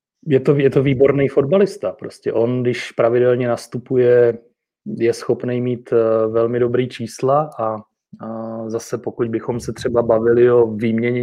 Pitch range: 110-120 Hz